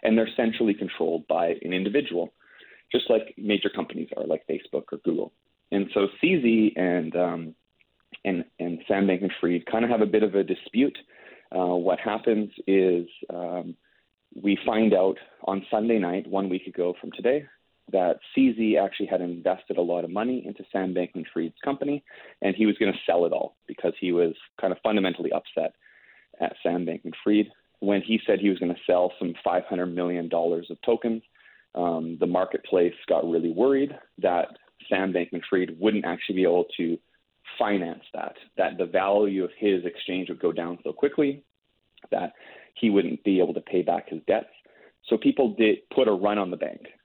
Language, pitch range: English, 90-110 Hz